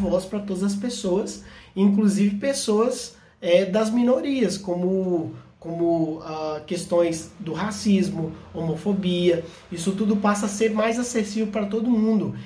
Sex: male